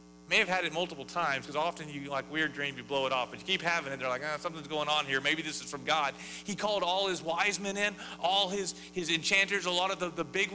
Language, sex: English, male